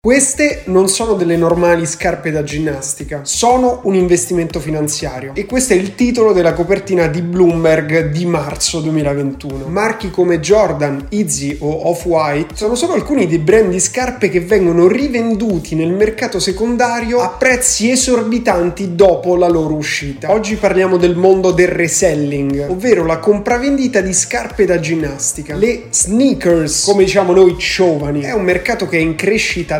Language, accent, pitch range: Italian, native, 165-225 Hz